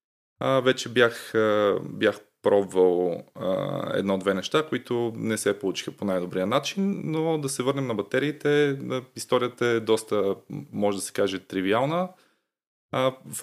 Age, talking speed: 20-39, 125 wpm